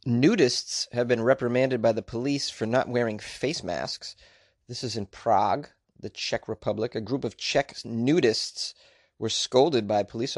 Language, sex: English, male